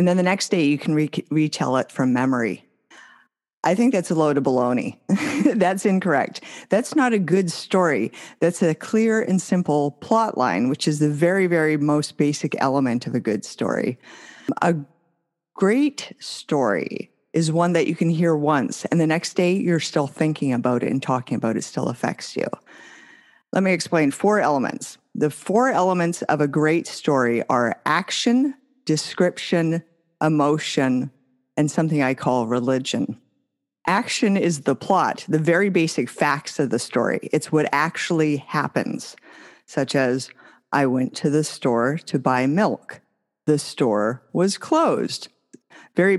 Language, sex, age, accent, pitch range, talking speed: English, female, 50-69, American, 135-180 Hz, 155 wpm